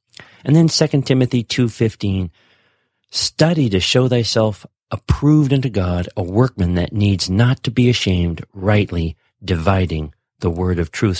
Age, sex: 40-59, male